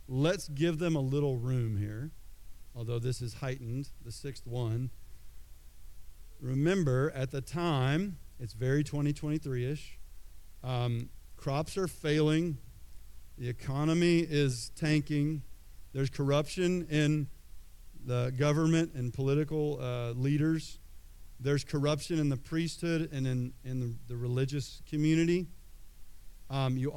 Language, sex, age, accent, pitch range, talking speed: English, male, 40-59, American, 120-150 Hz, 110 wpm